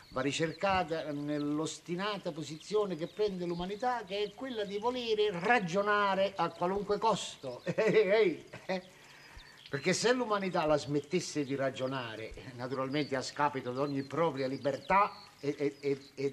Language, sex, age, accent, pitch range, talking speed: Italian, male, 50-69, native, 135-185 Hz, 130 wpm